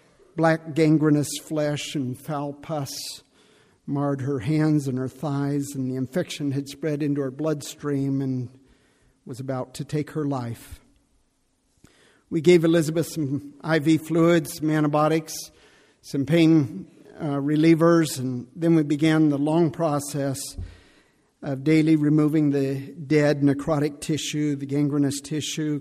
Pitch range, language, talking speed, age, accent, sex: 140-160 Hz, English, 130 wpm, 50-69, American, male